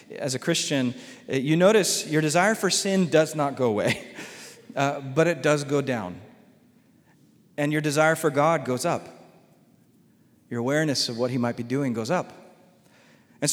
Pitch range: 140-185 Hz